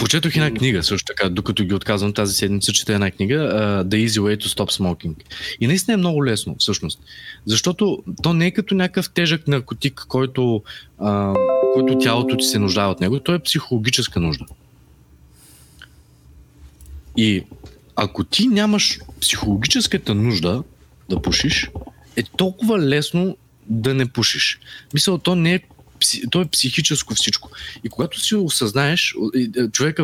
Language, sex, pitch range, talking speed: Bulgarian, male, 105-160 Hz, 150 wpm